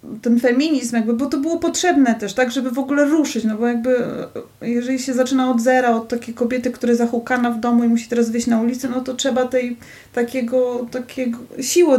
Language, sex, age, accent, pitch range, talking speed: Polish, female, 30-49, native, 210-255 Hz, 210 wpm